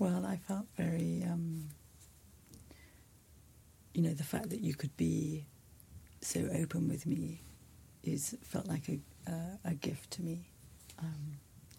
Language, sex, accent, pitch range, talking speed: English, female, British, 100-165 Hz, 135 wpm